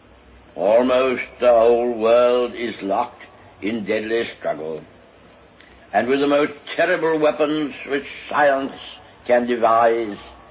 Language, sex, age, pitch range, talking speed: English, male, 60-79, 100-120 Hz, 110 wpm